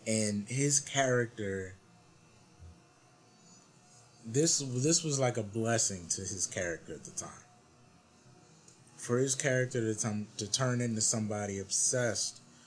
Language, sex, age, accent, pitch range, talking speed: English, male, 30-49, American, 100-125 Hz, 125 wpm